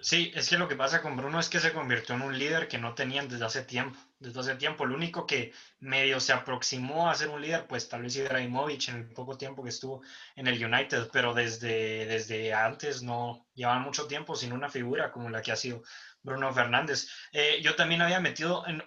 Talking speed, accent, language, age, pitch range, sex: 225 wpm, Mexican, Spanish, 20-39, 125-150 Hz, male